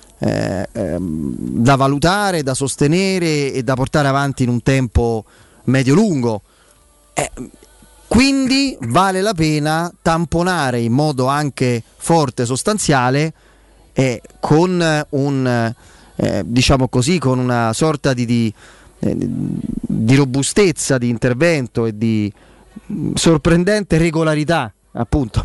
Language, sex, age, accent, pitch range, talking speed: Italian, male, 30-49, native, 120-155 Hz, 105 wpm